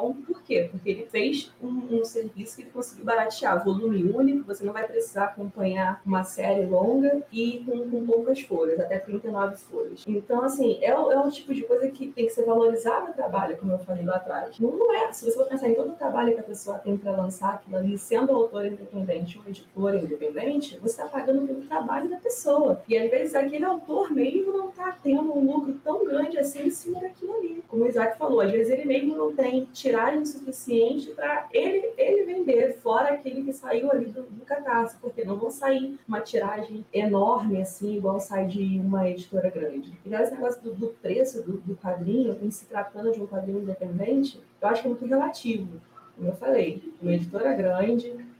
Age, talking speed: 20-39, 205 wpm